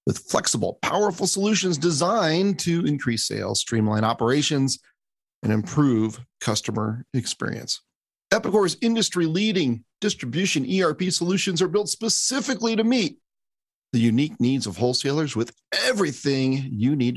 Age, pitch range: 40-59, 120-190 Hz